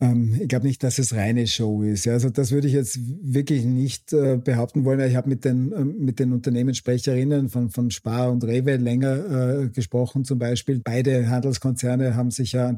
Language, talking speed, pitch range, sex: German, 190 wpm, 120-130 Hz, male